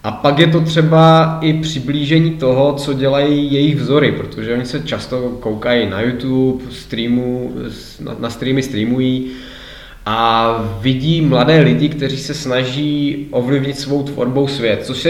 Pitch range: 120-150 Hz